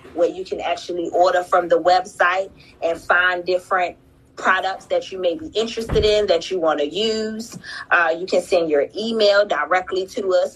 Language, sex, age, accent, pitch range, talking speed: English, female, 30-49, American, 175-210 Hz, 180 wpm